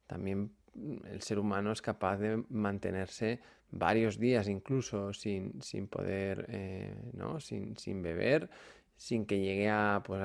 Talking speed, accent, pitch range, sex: 140 wpm, Spanish, 105-120 Hz, male